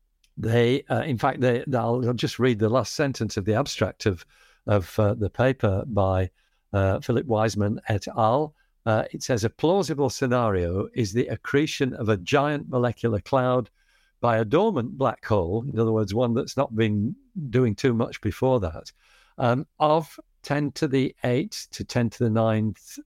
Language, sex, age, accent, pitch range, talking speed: English, male, 60-79, British, 110-135 Hz, 175 wpm